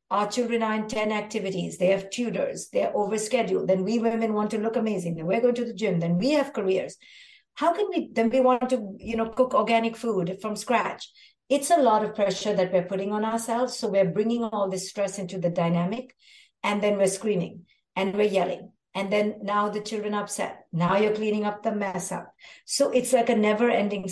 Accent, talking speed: Indian, 215 wpm